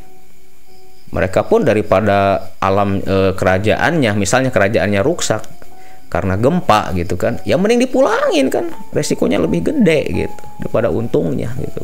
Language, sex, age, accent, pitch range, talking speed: Indonesian, male, 30-49, native, 95-130 Hz, 120 wpm